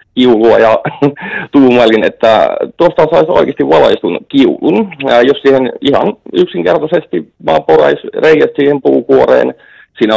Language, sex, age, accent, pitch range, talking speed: Finnish, male, 30-49, native, 100-135 Hz, 105 wpm